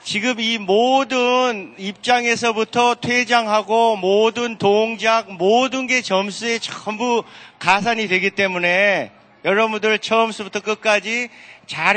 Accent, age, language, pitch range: native, 40-59, Korean, 195-240 Hz